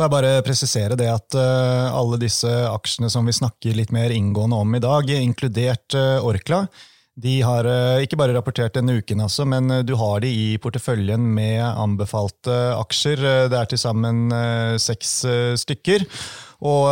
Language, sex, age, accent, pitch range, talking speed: English, male, 30-49, Swedish, 115-140 Hz, 140 wpm